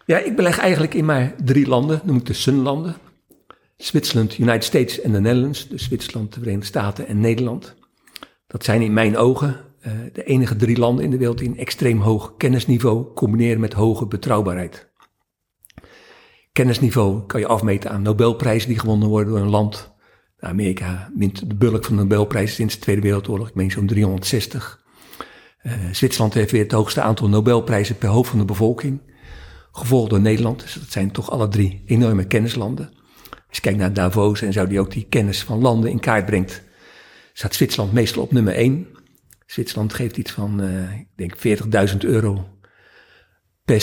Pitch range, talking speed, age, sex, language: 105-120 Hz, 175 wpm, 50-69, male, Dutch